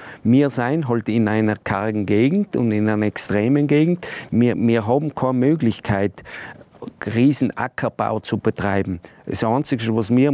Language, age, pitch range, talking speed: German, 40-59, 110-145 Hz, 145 wpm